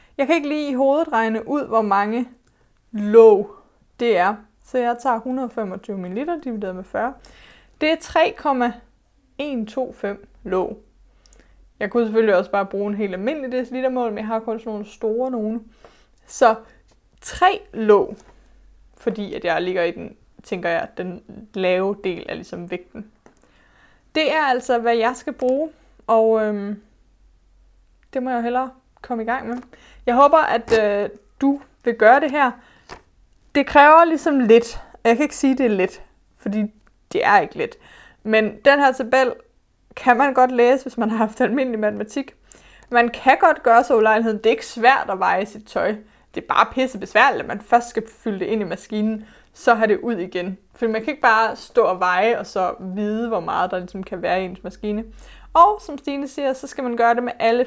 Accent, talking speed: native, 185 wpm